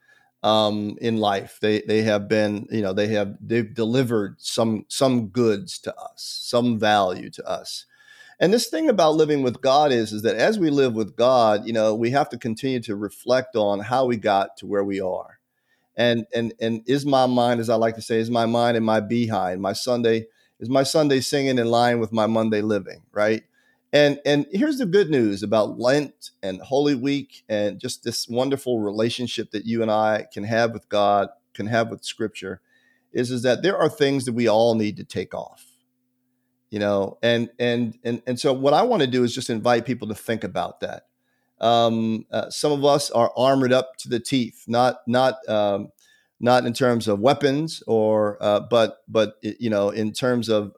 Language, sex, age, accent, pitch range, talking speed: English, male, 40-59, American, 110-125 Hz, 205 wpm